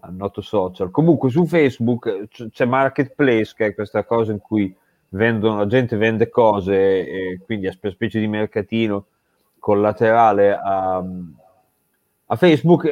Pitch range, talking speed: 105-130 Hz, 135 wpm